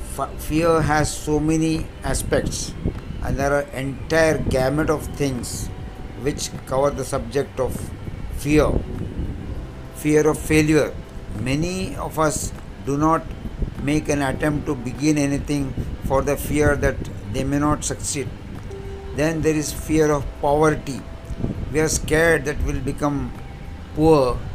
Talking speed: 130 wpm